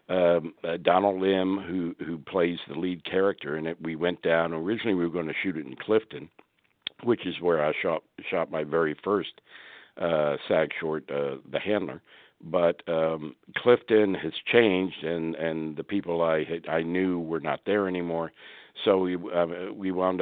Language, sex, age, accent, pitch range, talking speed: English, male, 60-79, American, 80-95 Hz, 180 wpm